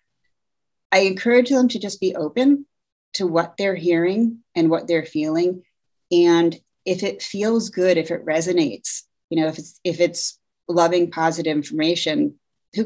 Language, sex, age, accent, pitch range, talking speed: English, female, 30-49, American, 155-185 Hz, 155 wpm